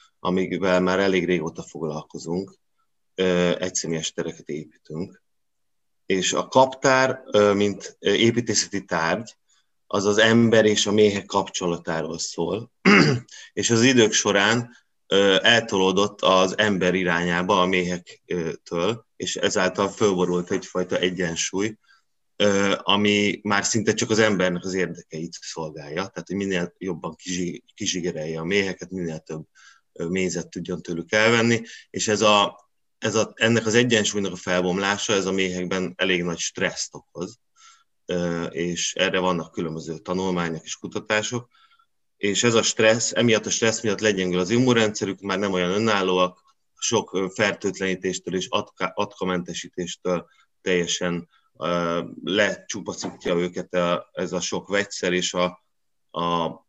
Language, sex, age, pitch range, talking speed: Hungarian, male, 30-49, 90-105 Hz, 120 wpm